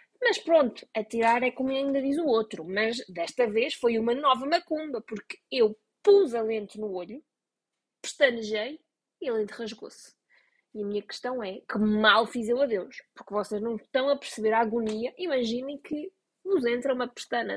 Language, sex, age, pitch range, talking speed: Portuguese, female, 20-39, 230-300 Hz, 180 wpm